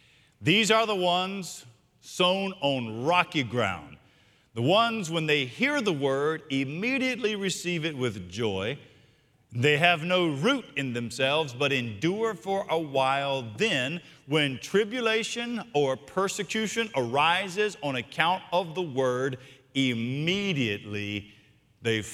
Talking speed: 120 wpm